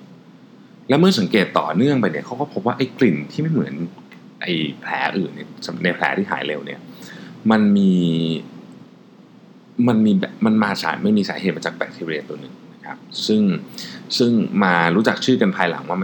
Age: 20-39